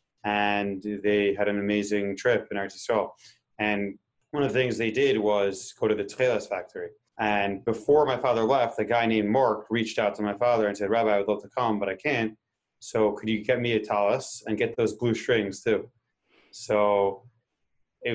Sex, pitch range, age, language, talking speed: male, 105-125 Hz, 30-49, English, 200 wpm